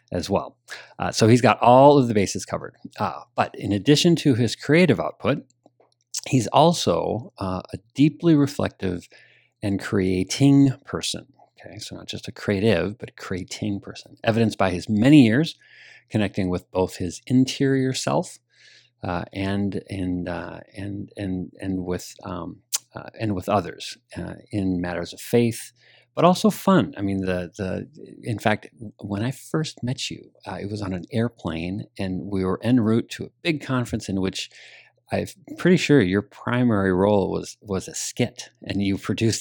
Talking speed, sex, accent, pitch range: 170 wpm, male, American, 95-130 Hz